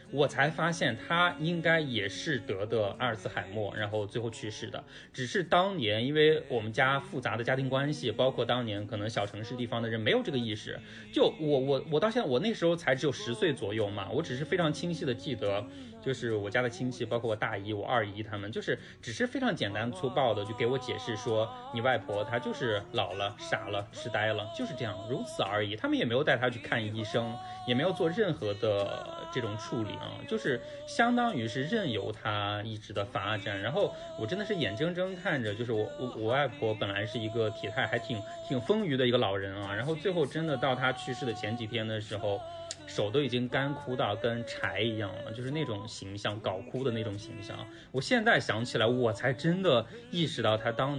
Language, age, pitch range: Chinese, 20-39, 110-145 Hz